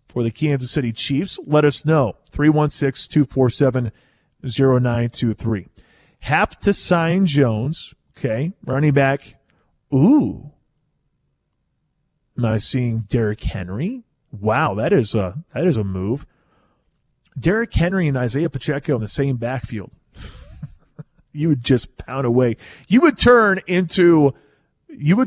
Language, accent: English, American